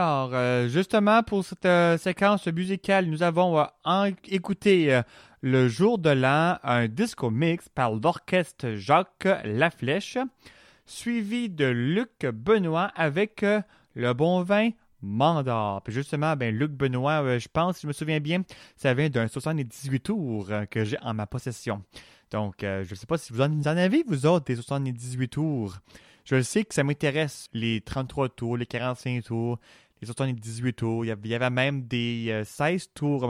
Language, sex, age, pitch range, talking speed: French, male, 30-49, 120-180 Hz, 160 wpm